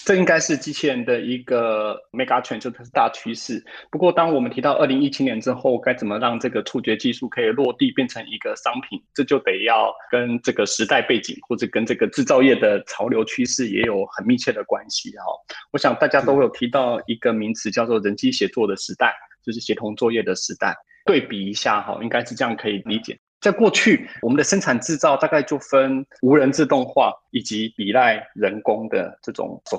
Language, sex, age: Chinese, male, 20-39